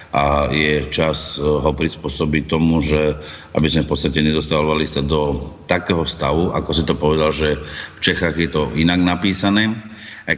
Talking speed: 160 wpm